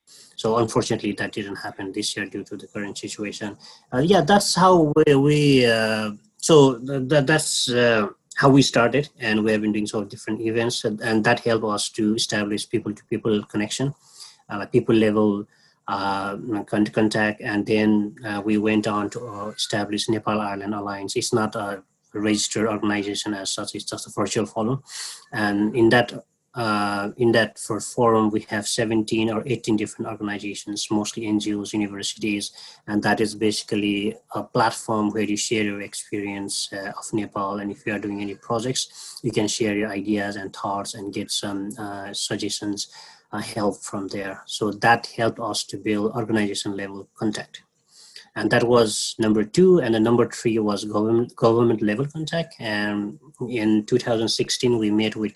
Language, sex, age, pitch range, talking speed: English, male, 30-49, 105-115 Hz, 175 wpm